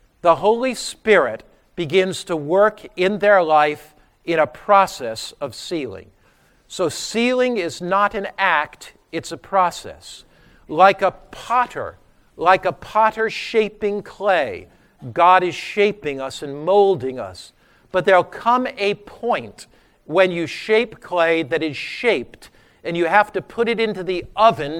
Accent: American